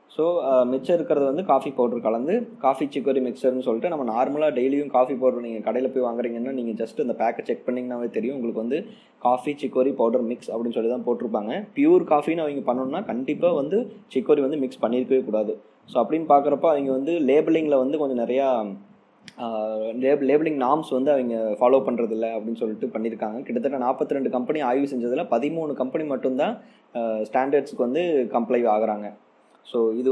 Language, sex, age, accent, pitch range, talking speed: Tamil, male, 20-39, native, 120-140 Hz, 160 wpm